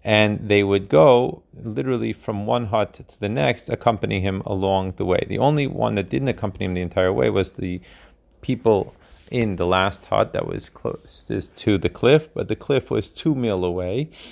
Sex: male